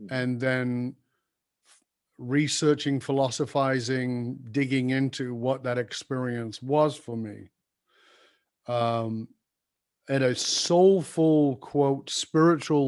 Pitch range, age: 125-150 Hz, 50-69